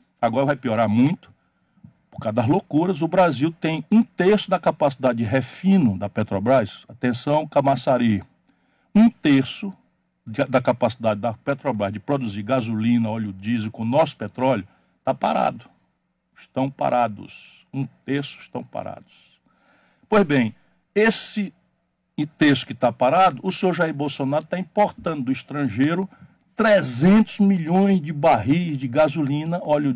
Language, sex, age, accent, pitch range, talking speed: Portuguese, male, 60-79, Brazilian, 125-195 Hz, 130 wpm